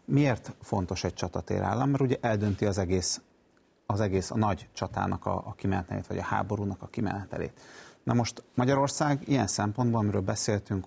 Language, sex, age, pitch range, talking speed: Hungarian, male, 30-49, 100-120 Hz, 155 wpm